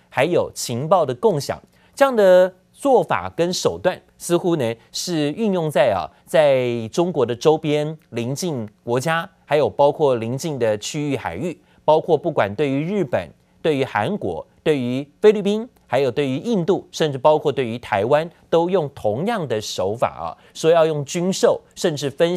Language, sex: Chinese, male